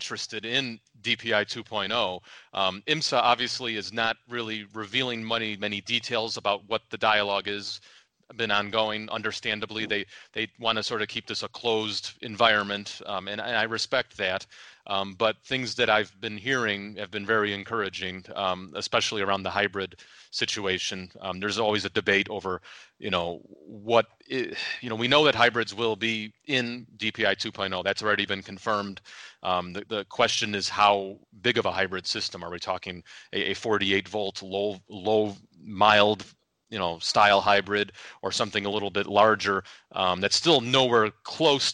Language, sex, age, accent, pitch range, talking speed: English, male, 30-49, American, 100-115 Hz, 170 wpm